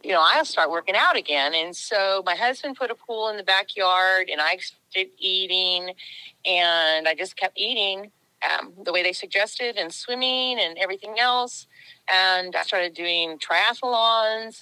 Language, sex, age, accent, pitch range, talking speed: English, female, 40-59, American, 165-230 Hz, 170 wpm